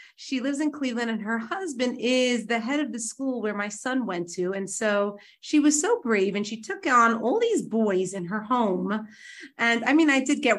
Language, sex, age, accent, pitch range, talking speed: English, female, 30-49, American, 210-285 Hz, 225 wpm